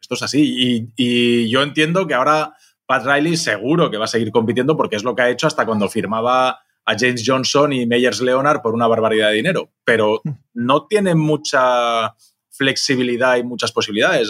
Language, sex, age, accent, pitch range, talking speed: Spanish, male, 20-39, Spanish, 120-150 Hz, 180 wpm